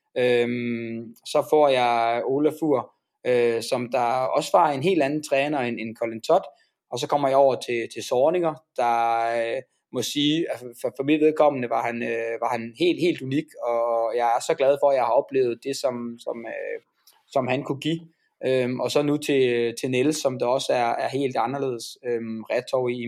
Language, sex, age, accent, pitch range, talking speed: Danish, male, 20-39, native, 120-150 Hz, 180 wpm